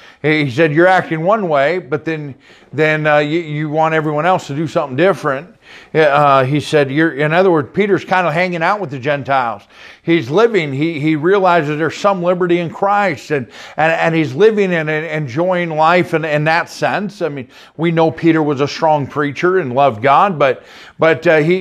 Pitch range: 145-180 Hz